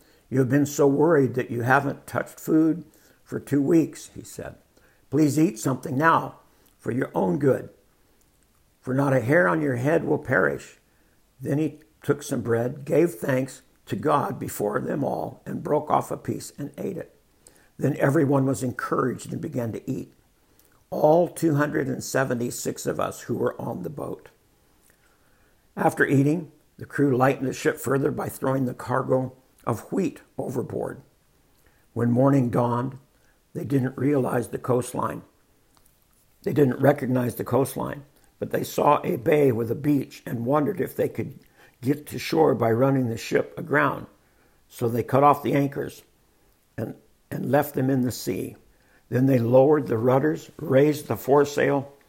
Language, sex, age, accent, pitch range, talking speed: English, male, 60-79, American, 125-150 Hz, 160 wpm